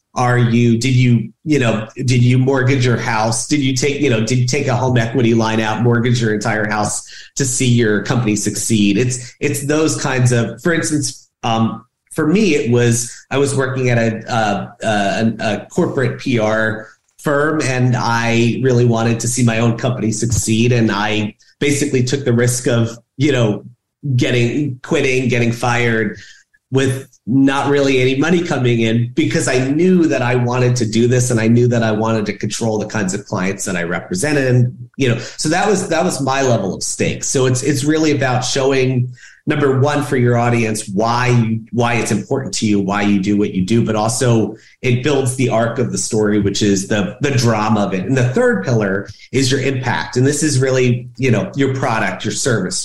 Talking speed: 205 wpm